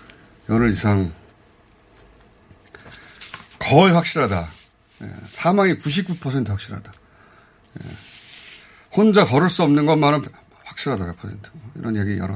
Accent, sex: native, male